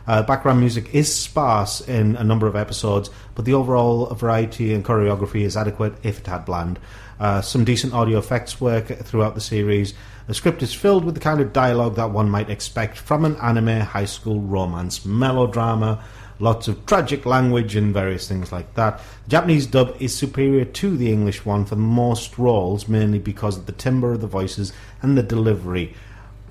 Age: 30-49